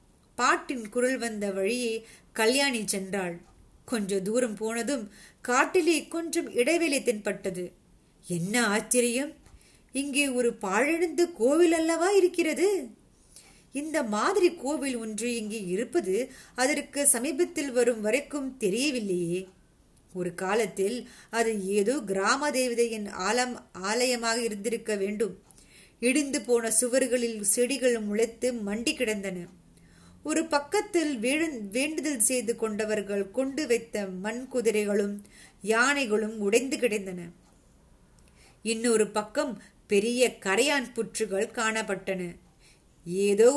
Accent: native